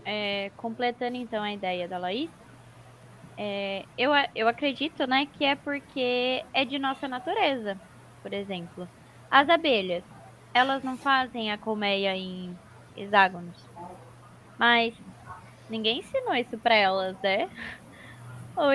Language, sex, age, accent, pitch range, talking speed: Portuguese, female, 10-29, Brazilian, 210-285 Hz, 115 wpm